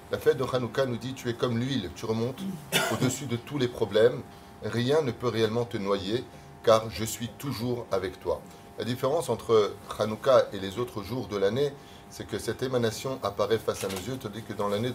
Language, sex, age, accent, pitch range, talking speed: French, male, 30-49, French, 105-125 Hz, 210 wpm